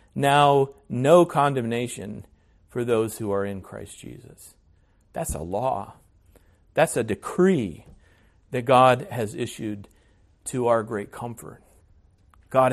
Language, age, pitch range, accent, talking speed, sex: English, 40-59, 90-125 Hz, American, 120 wpm, male